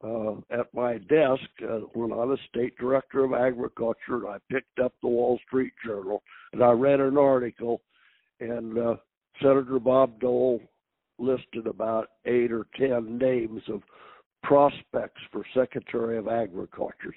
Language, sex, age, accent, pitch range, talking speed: English, male, 60-79, American, 115-135 Hz, 145 wpm